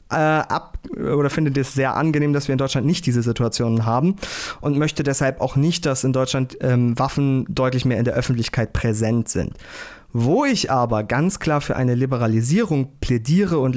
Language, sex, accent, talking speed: German, male, German, 175 wpm